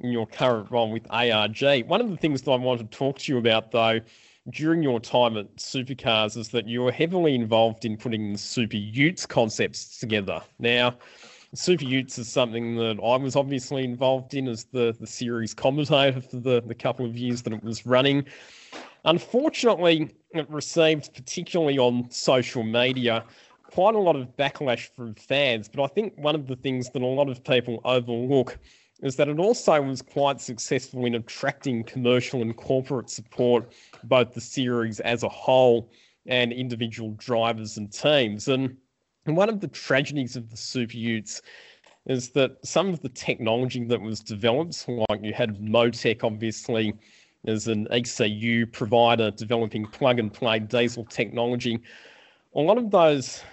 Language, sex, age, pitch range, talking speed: English, male, 20-39, 115-135 Hz, 170 wpm